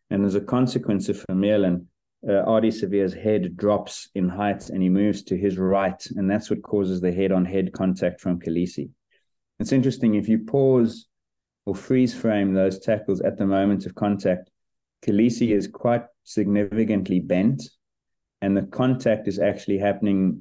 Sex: male